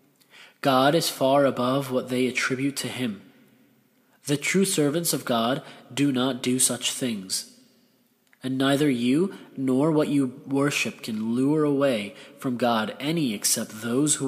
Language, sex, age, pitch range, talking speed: English, male, 30-49, 125-150 Hz, 145 wpm